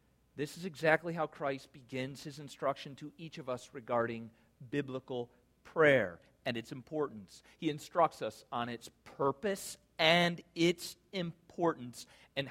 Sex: male